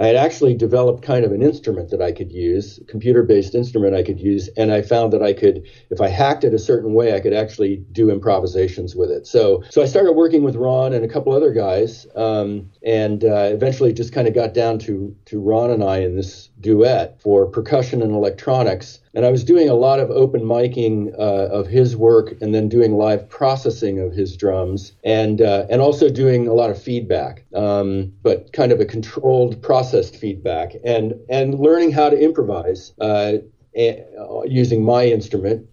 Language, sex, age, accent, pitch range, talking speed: English, male, 50-69, American, 105-125 Hz, 205 wpm